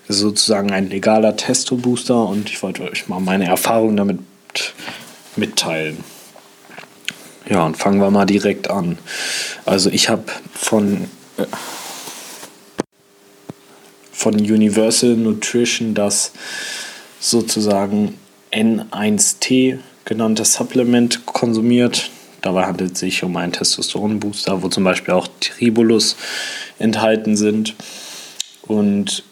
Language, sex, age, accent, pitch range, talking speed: English, male, 20-39, German, 95-110 Hz, 100 wpm